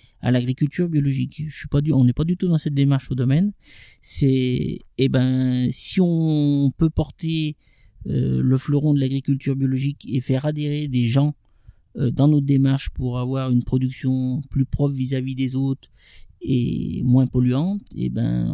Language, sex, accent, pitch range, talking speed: French, male, French, 125-150 Hz, 170 wpm